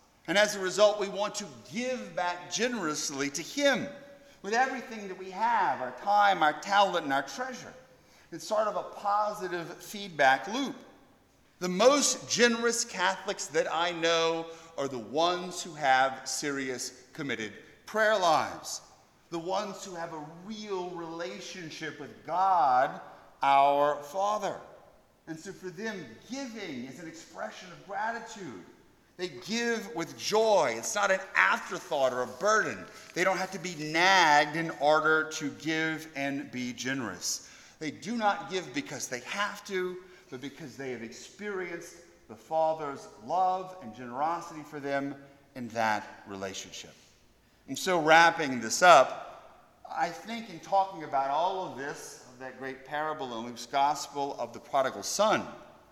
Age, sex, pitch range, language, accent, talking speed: 40-59, male, 140-205 Hz, English, American, 150 wpm